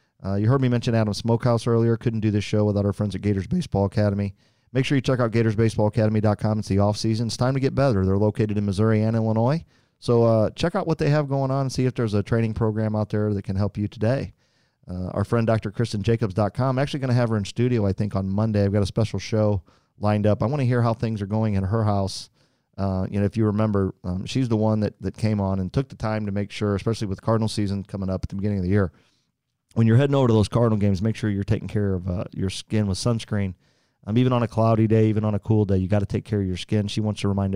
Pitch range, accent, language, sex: 100-115 Hz, American, English, male